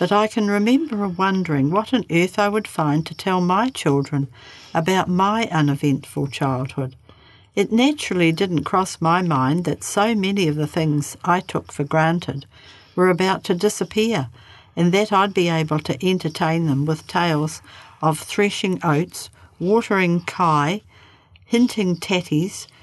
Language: English